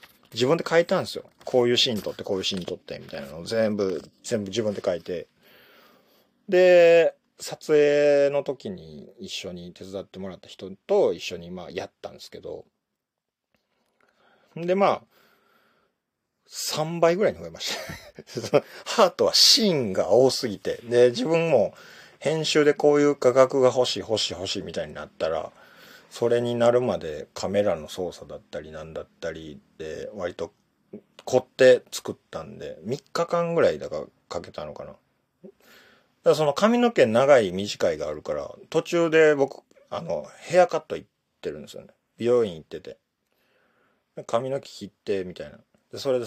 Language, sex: Japanese, male